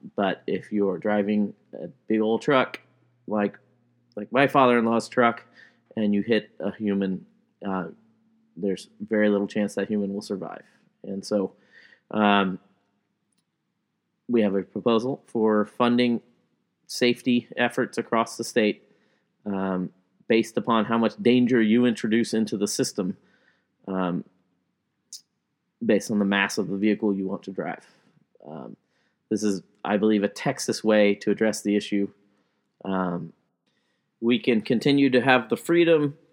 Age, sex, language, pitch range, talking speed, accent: 30-49, male, English, 100-120 Hz, 140 wpm, American